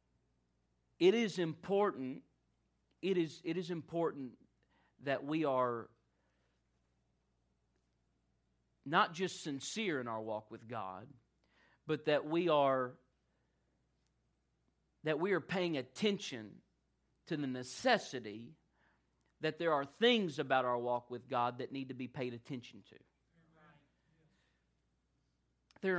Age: 40-59